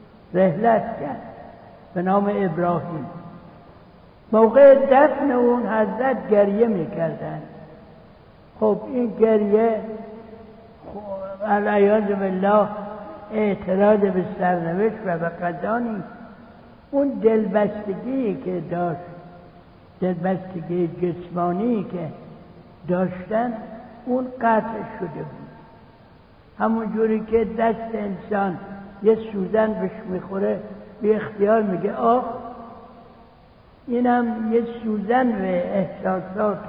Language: Persian